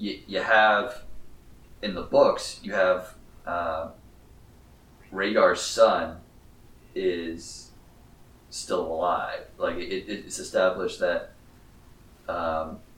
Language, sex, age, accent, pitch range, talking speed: English, male, 30-49, American, 85-95 Hz, 90 wpm